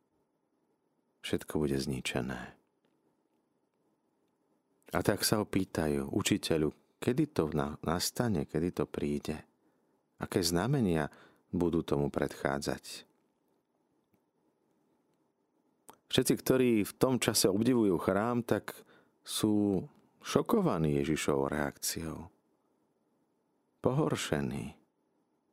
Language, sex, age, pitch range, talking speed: Slovak, male, 40-59, 75-100 Hz, 75 wpm